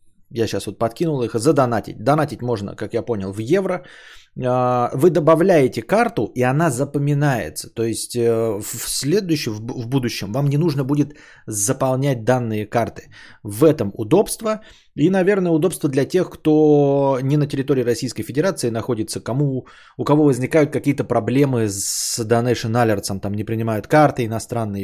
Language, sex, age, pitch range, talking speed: Bulgarian, male, 20-39, 110-150 Hz, 145 wpm